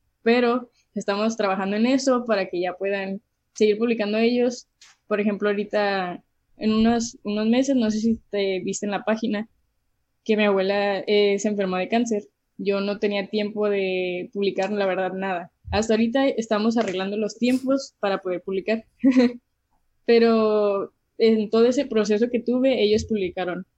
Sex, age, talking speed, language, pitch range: female, 10-29, 155 wpm, English, 200-230 Hz